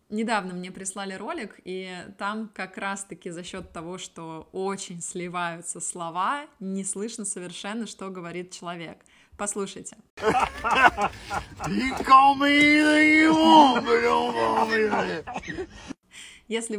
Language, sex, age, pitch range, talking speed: Russian, female, 20-39, 175-215 Hz, 80 wpm